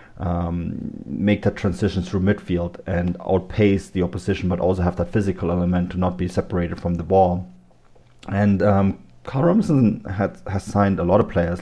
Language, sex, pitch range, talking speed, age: English, male, 90-100 Hz, 175 wpm, 30-49